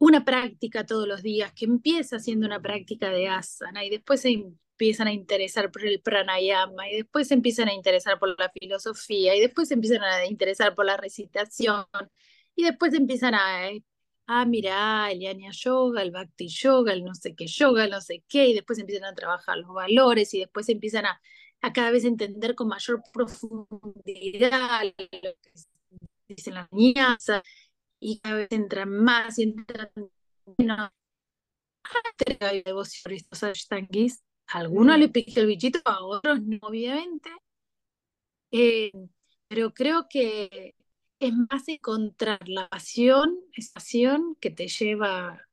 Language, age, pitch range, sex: Spanish, 30-49, 195-250 Hz, female